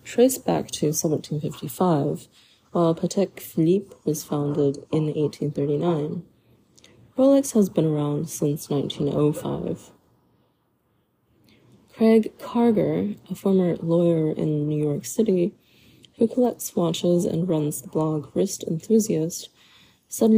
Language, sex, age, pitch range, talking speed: English, female, 20-39, 155-200 Hz, 105 wpm